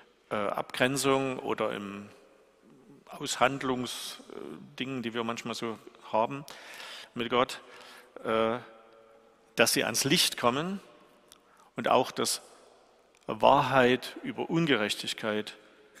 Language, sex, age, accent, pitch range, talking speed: German, male, 50-69, German, 115-130 Hz, 90 wpm